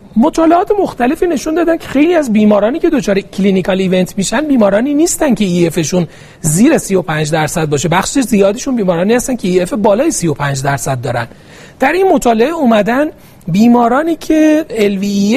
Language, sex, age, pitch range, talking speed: Persian, male, 40-59, 180-255 Hz, 170 wpm